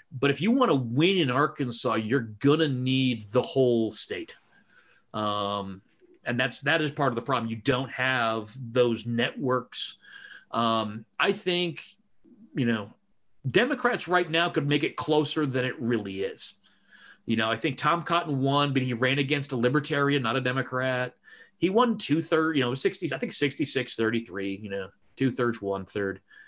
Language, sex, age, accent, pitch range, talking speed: English, male, 30-49, American, 120-155 Hz, 175 wpm